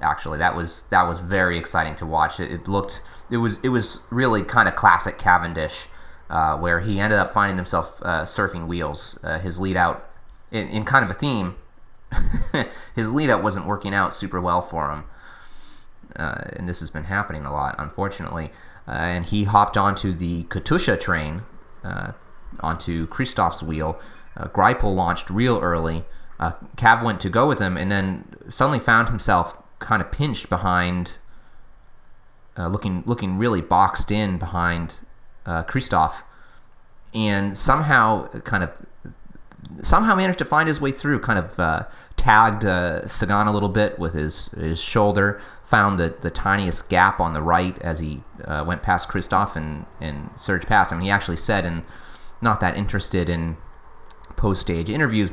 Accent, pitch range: American, 85-105 Hz